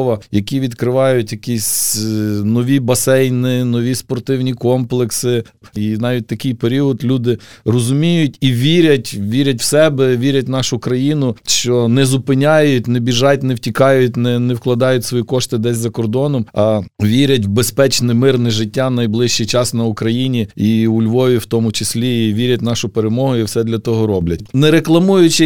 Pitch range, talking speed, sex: 115-135 Hz, 155 wpm, male